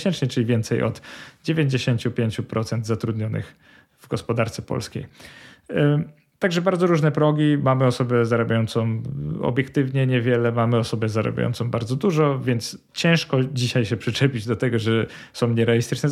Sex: male